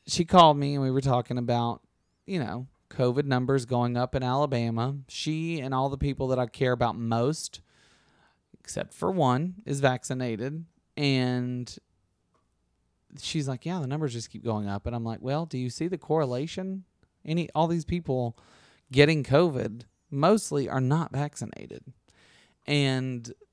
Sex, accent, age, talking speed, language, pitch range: male, American, 30-49, 155 wpm, English, 120-160 Hz